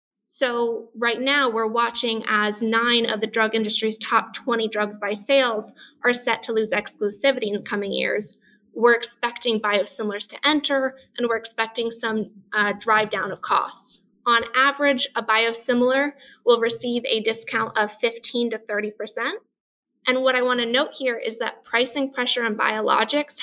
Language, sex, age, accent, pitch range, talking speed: English, female, 20-39, American, 215-245 Hz, 165 wpm